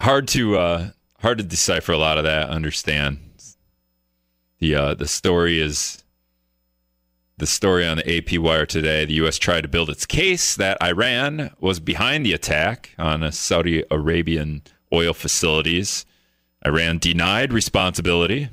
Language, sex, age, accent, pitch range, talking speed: English, male, 40-59, American, 75-95 Hz, 145 wpm